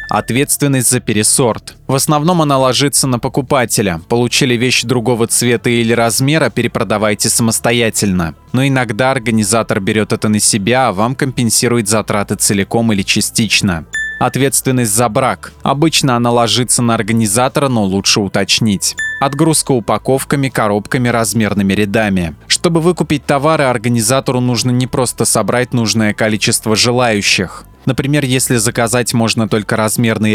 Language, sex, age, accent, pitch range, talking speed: Russian, male, 20-39, native, 110-135 Hz, 125 wpm